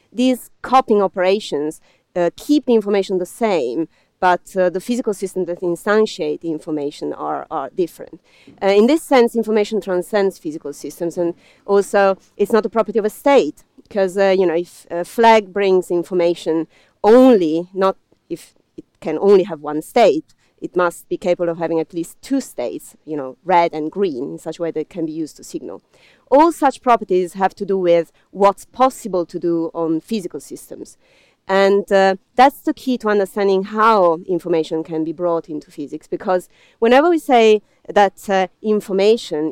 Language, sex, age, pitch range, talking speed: English, female, 30-49, 170-220 Hz, 180 wpm